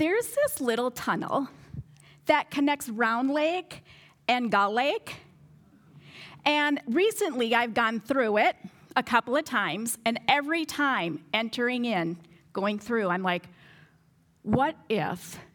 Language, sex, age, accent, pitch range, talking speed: English, female, 40-59, American, 180-260 Hz, 125 wpm